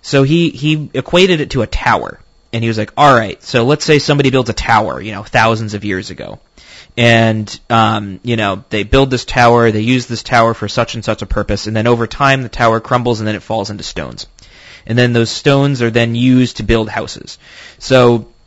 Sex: male